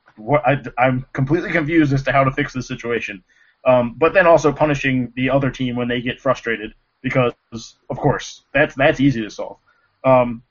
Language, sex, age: English, male, 20-39